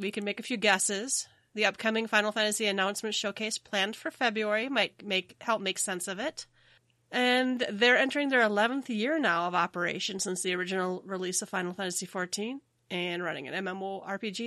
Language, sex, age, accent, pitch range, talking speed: English, female, 30-49, American, 185-225 Hz, 180 wpm